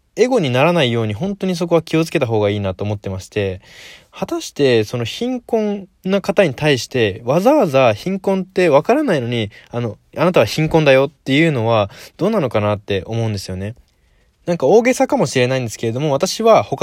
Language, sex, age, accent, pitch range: Japanese, male, 20-39, native, 110-175 Hz